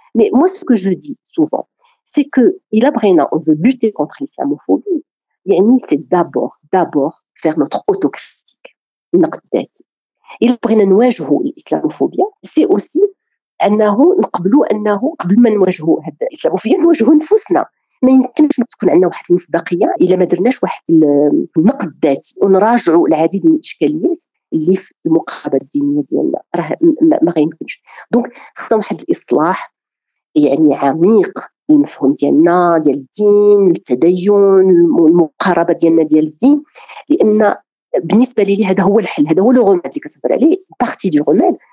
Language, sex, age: Arabic, female, 50-69